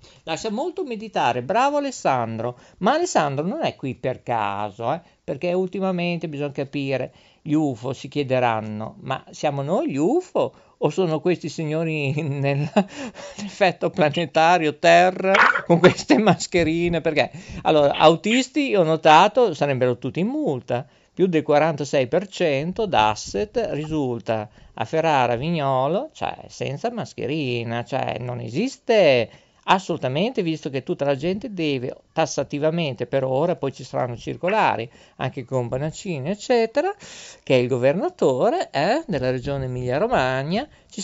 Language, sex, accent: Italian, male, native